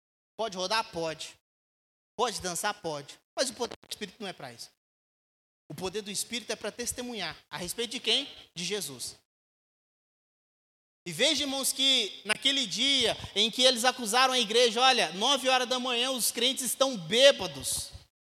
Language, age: Portuguese, 20-39